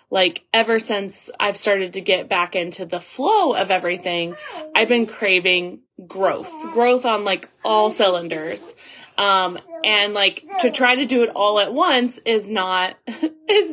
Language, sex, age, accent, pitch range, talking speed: English, female, 20-39, American, 190-260 Hz, 155 wpm